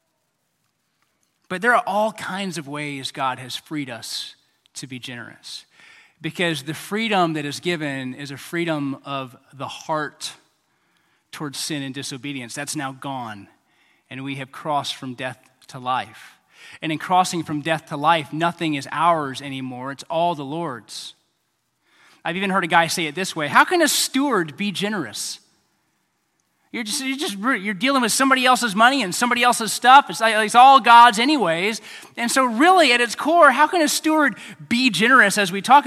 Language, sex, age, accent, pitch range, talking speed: English, male, 20-39, American, 150-240 Hz, 175 wpm